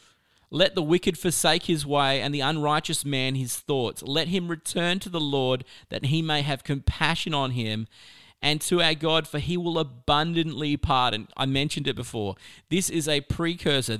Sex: male